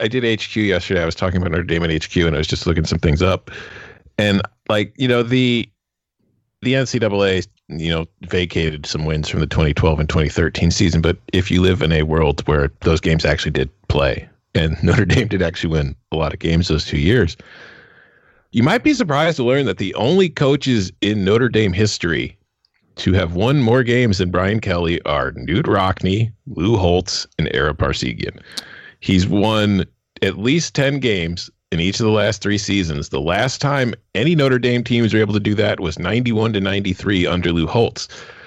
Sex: male